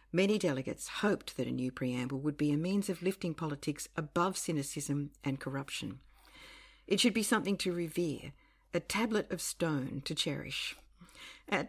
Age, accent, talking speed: 50-69, Australian, 160 wpm